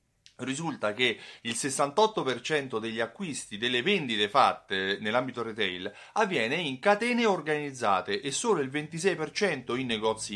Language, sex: Italian, male